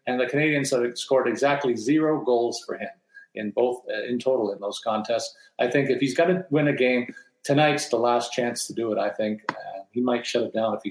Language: English